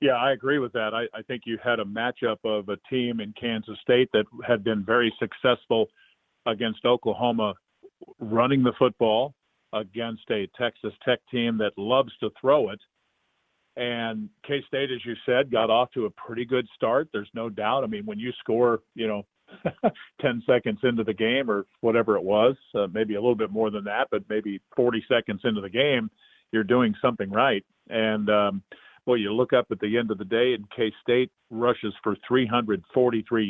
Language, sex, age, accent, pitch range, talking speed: English, male, 40-59, American, 110-125 Hz, 190 wpm